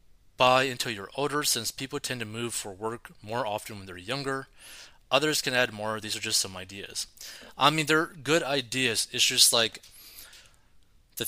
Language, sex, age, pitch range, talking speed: English, male, 30-49, 105-130 Hz, 175 wpm